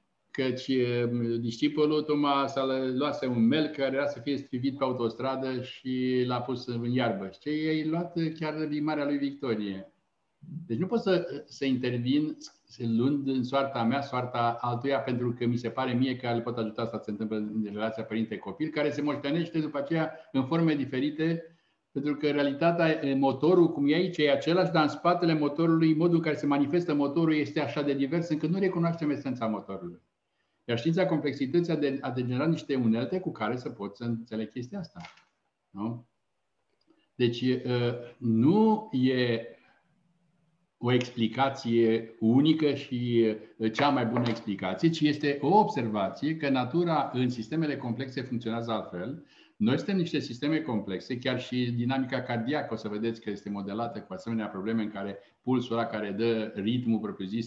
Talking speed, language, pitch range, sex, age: 165 wpm, Romanian, 115-150 Hz, male, 60-79